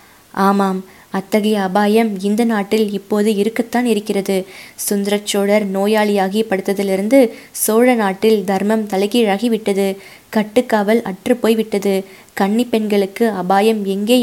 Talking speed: 95 wpm